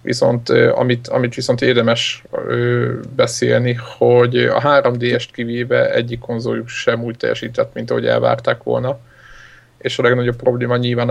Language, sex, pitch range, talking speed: Hungarian, male, 110-125 Hz, 140 wpm